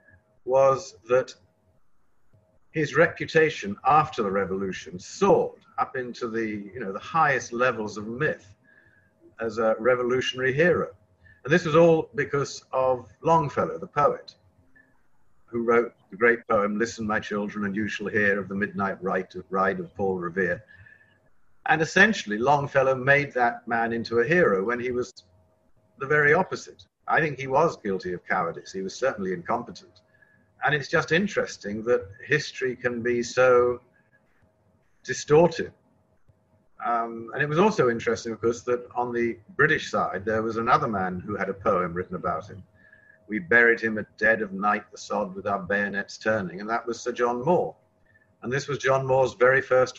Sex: male